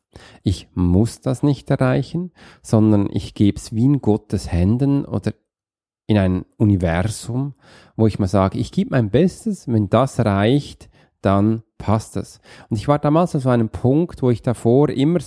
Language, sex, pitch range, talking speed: German, male, 100-135 Hz, 165 wpm